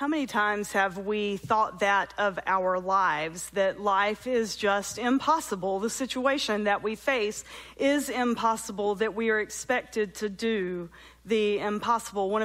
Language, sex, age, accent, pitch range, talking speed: English, female, 40-59, American, 215-290 Hz, 150 wpm